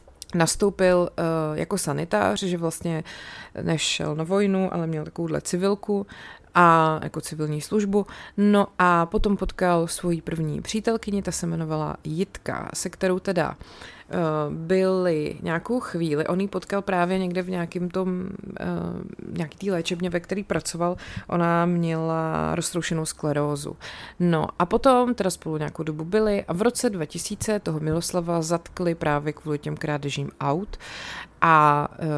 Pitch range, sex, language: 155-185 Hz, female, Czech